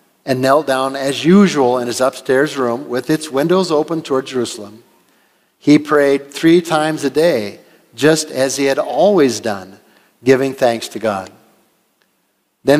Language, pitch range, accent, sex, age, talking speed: English, 120-155 Hz, American, male, 50-69, 150 wpm